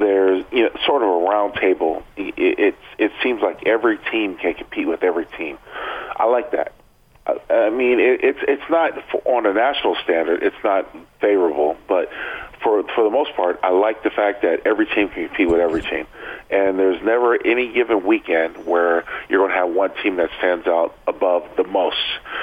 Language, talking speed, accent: English, 200 wpm, American